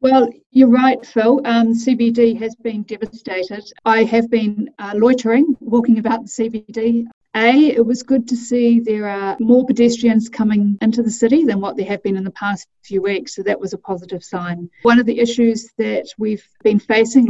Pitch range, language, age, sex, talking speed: 190-235 Hz, English, 50-69, female, 195 wpm